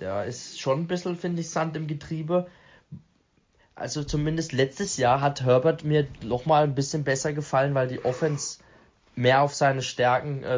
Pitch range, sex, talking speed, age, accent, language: 125-150 Hz, male, 180 wpm, 20-39, German, German